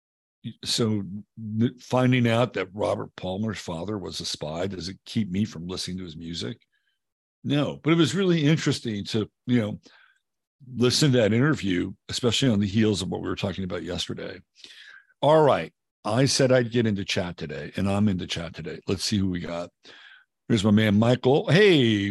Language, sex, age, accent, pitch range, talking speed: English, male, 50-69, American, 95-125 Hz, 185 wpm